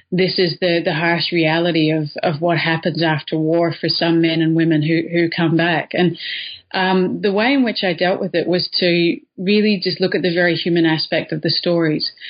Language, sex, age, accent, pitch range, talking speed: English, female, 30-49, Australian, 165-190 Hz, 215 wpm